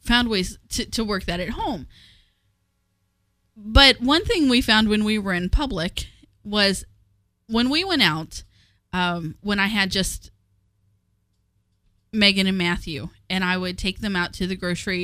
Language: English